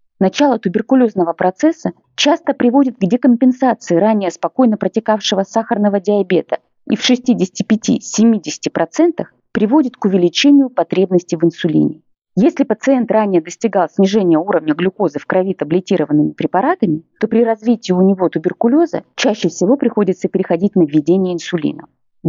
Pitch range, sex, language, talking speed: 175-240 Hz, female, Russian, 125 wpm